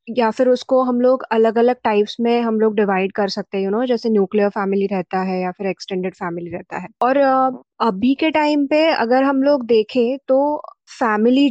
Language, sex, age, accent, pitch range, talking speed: Hindi, female, 20-39, native, 215-270 Hz, 205 wpm